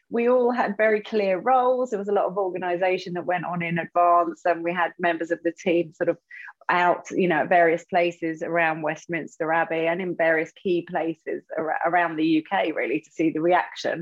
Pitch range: 160-185 Hz